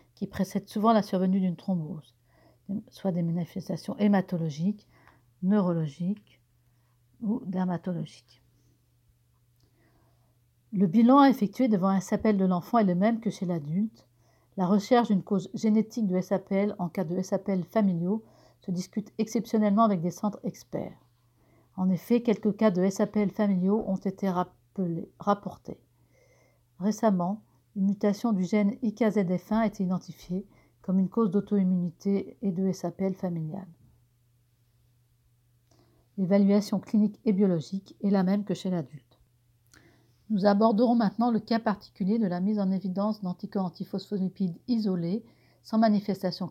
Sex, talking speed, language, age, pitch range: female, 130 wpm, French, 60-79, 170-210 Hz